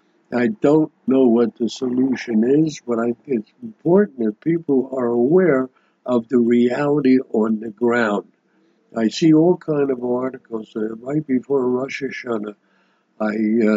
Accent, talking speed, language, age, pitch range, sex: American, 145 wpm, English, 60-79, 115-140 Hz, male